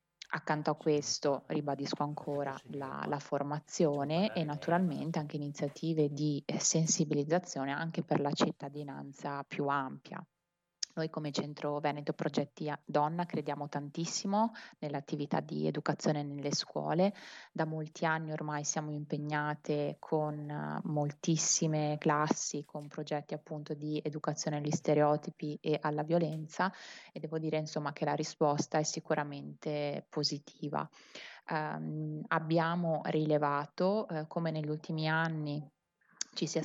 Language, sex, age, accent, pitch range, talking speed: Italian, female, 20-39, native, 145-165 Hz, 115 wpm